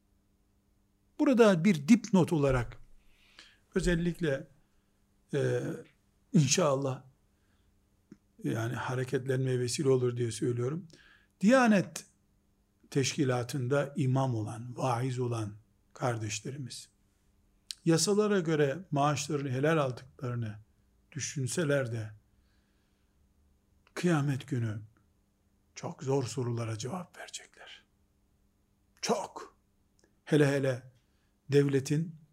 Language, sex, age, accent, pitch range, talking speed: Turkish, male, 60-79, native, 105-155 Hz, 70 wpm